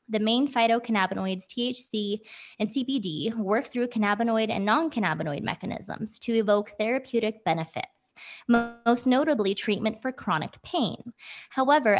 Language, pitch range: English, 190-245 Hz